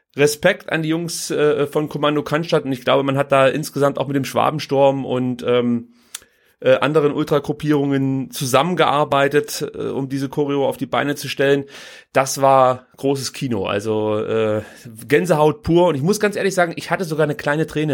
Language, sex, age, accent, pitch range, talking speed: German, male, 30-49, German, 135-165 Hz, 180 wpm